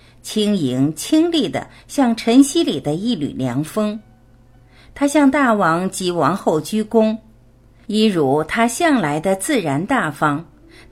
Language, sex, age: Chinese, female, 50-69